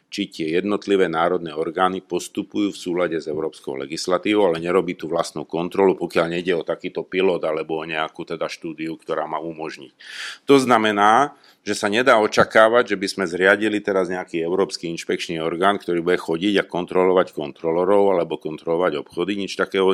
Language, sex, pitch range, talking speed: Slovak, male, 85-105 Hz, 165 wpm